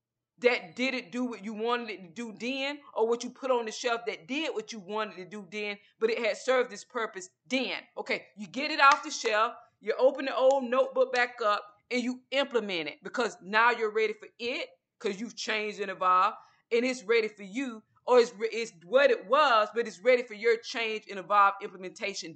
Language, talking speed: English, 215 wpm